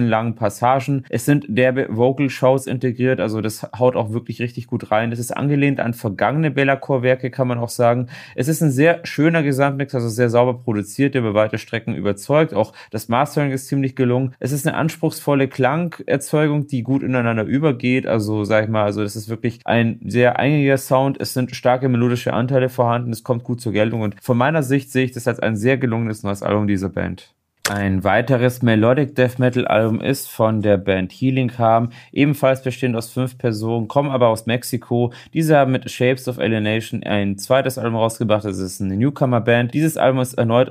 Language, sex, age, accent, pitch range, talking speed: German, male, 30-49, German, 115-135 Hz, 200 wpm